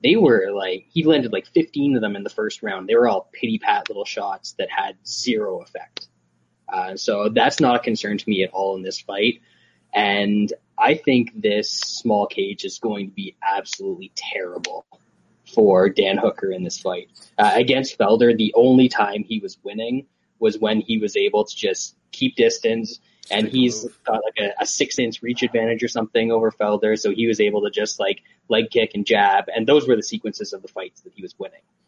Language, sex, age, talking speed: English, male, 20-39, 205 wpm